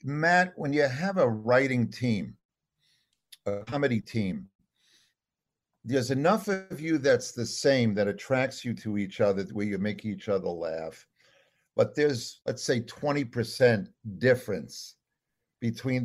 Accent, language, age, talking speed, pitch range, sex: American, English, 50-69, 135 wpm, 110-140 Hz, male